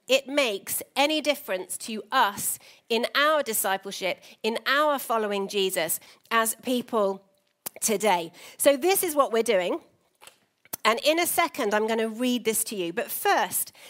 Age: 40-59